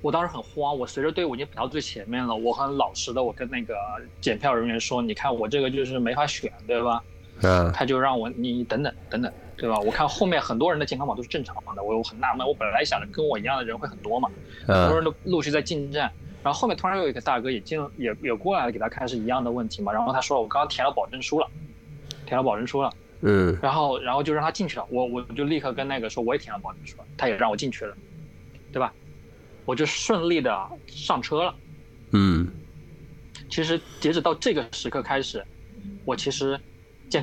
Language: Chinese